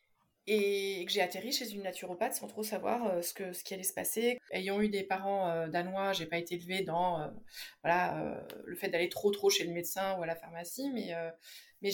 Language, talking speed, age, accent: French, 230 wpm, 20-39, French